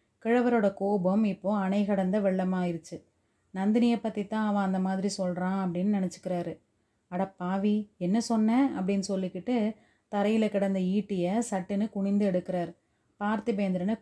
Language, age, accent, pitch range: Tamil, 30-49, native, 185-210 Hz